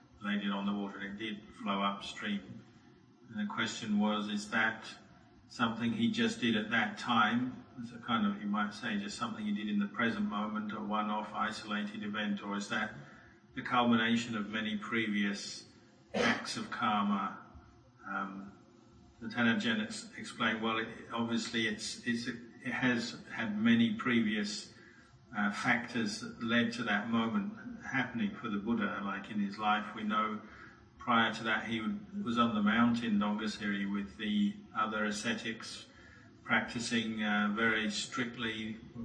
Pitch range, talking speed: 105-120 Hz, 155 wpm